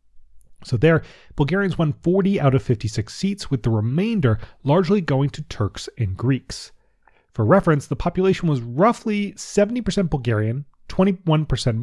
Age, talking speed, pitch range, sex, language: 30-49, 135 wpm, 115-160 Hz, male, English